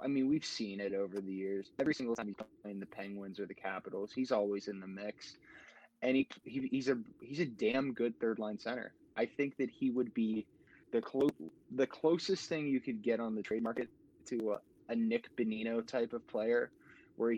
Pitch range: 105-130 Hz